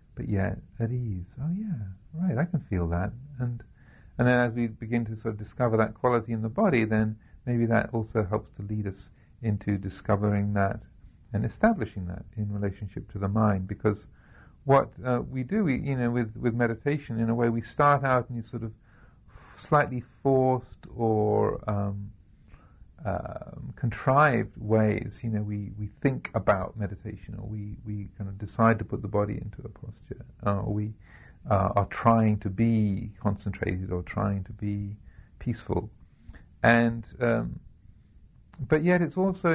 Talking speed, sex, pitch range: 170 wpm, male, 100-125 Hz